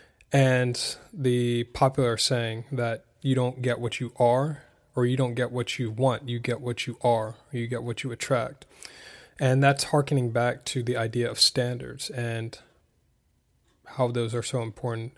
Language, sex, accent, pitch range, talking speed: English, male, American, 115-135 Hz, 175 wpm